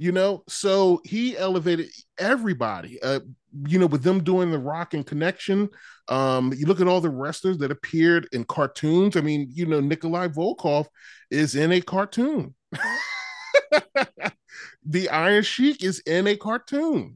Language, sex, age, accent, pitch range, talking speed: English, male, 30-49, American, 120-175 Hz, 150 wpm